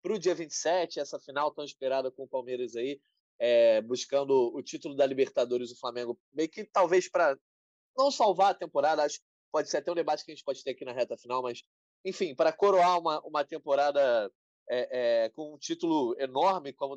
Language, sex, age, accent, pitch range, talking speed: Portuguese, male, 20-39, Brazilian, 145-230 Hz, 210 wpm